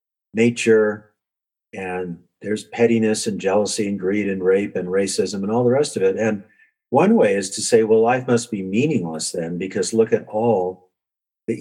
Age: 50-69